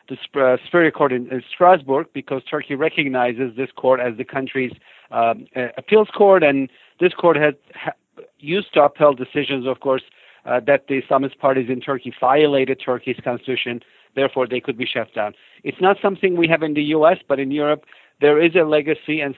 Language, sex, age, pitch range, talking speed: English, male, 50-69, 130-155 Hz, 185 wpm